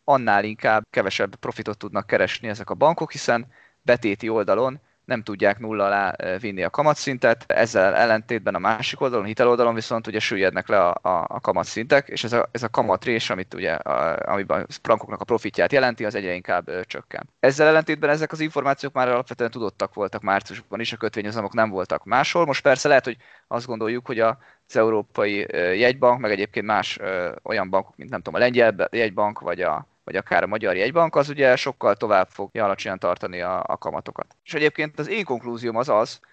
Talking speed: 195 wpm